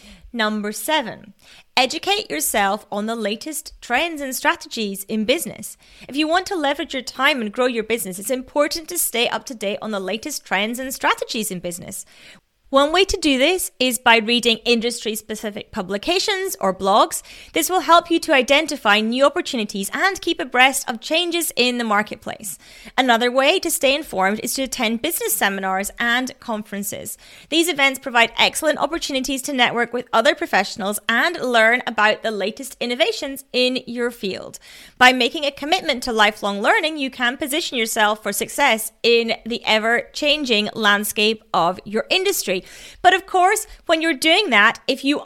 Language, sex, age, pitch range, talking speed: English, female, 30-49, 215-295 Hz, 165 wpm